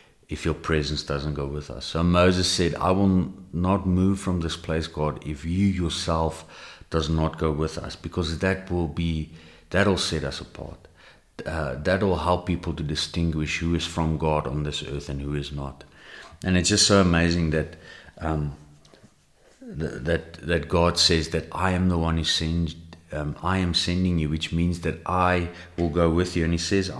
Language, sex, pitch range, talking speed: English, male, 75-90 Hz, 190 wpm